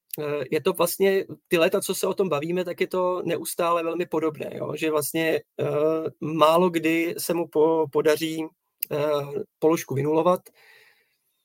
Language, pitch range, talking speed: Czech, 150-165 Hz, 150 wpm